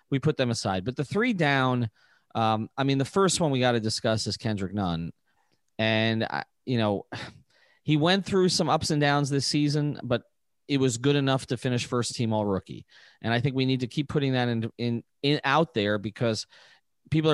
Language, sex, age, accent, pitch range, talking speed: English, male, 30-49, American, 115-145 Hz, 210 wpm